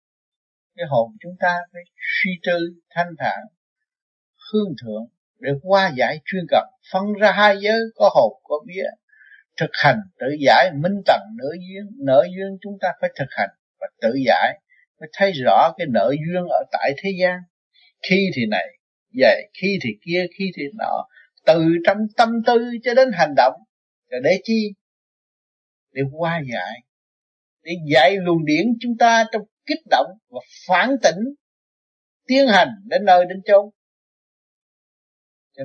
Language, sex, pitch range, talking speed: Vietnamese, male, 155-215 Hz, 160 wpm